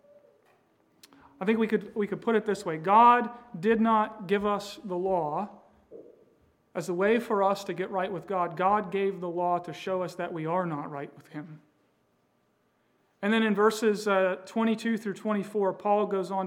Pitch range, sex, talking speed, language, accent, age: 175-210 Hz, male, 190 wpm, English, American, 40-59